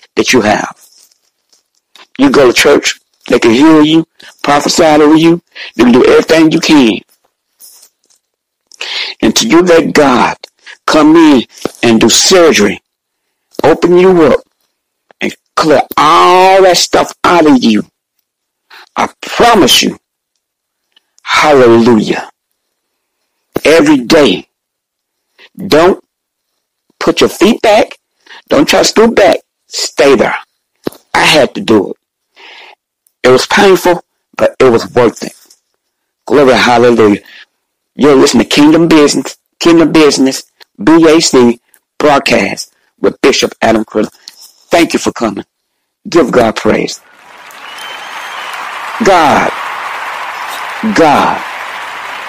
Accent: American